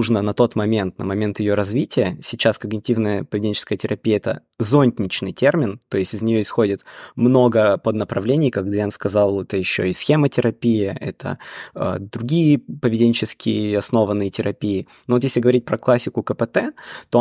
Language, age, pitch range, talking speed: Russian, 20-39, 105-125 Hz, 155 wpm